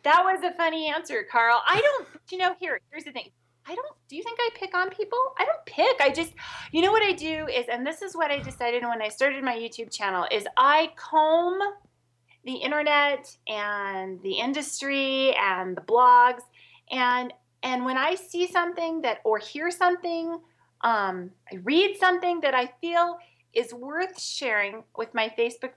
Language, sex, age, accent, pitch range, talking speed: English, female, 30-49, American, 245-340 Hz, 185 wpm